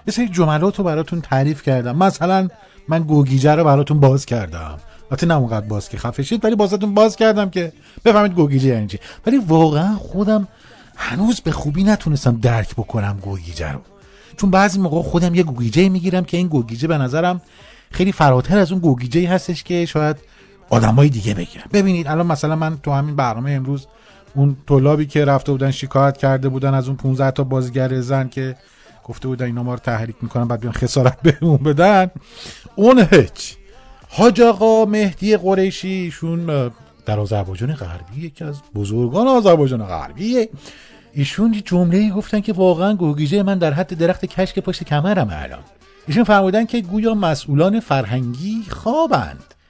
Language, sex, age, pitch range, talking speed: Persian, male, 30-49, 130-185 Hz, 160 wpm